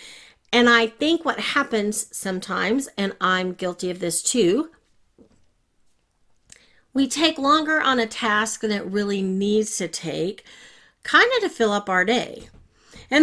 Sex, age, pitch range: female, 40-59, 195-275 Hz